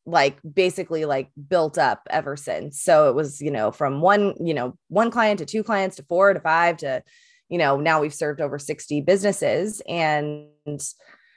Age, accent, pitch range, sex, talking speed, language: 20-39, American, 150-195 Hz, female, 185 wpm, English